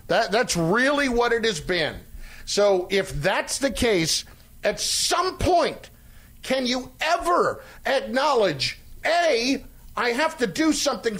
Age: 50-69